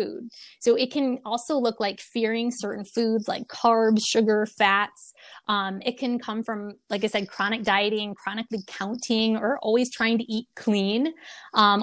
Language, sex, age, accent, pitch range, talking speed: English, female, 20-39, American, 200-235 Hz, 160 wpm